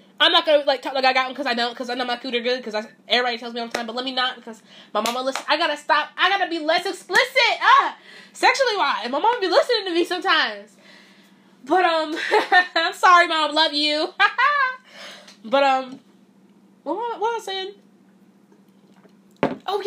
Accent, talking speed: American, 205 wpm